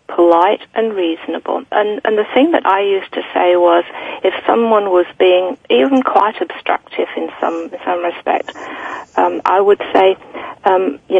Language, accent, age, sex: English, British, 40-59, female